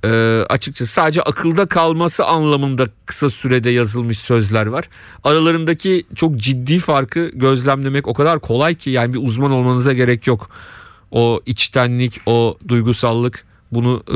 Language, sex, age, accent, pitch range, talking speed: Turkish, male, 40-59, native, 110-145 Hz, 130 wpm